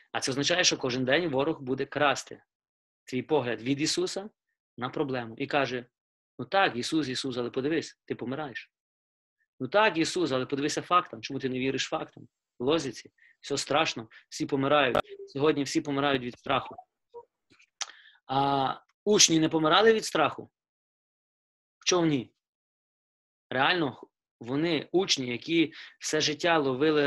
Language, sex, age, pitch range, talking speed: Ukrainian, male, 30-49, 130-165 Hz, 135 wpm